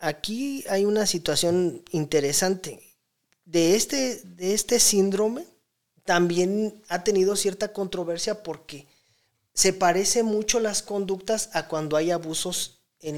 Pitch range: 165-200 Hz